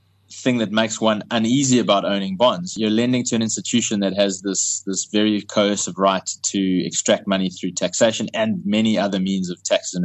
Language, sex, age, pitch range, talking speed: English, male, 20-39, 95-115 Hz, 190 wpm